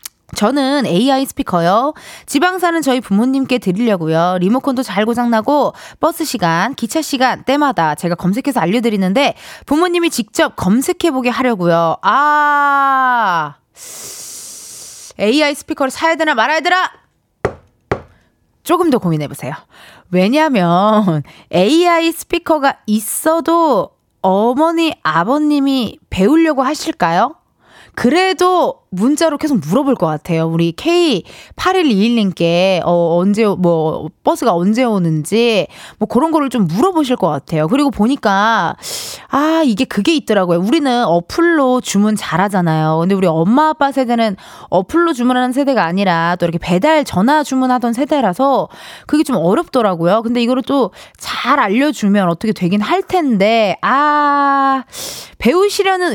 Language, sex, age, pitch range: Korean, female, 20-39, 195-295 Hz